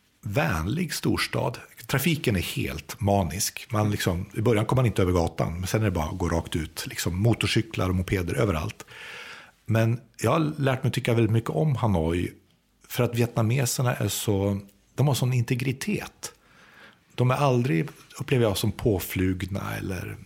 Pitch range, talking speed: 95-120 Hz, 165 wpm